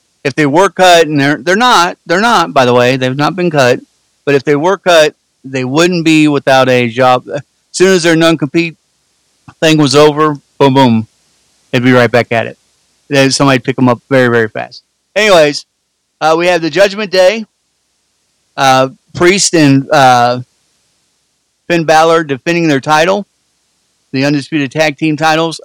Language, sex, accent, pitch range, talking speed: English, male, American, 140-185 Hz, 170 wpm